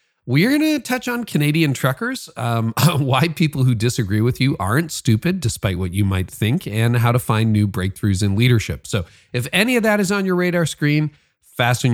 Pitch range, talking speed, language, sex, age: 105-130 Hz, 200 wpm, English, male, 40-59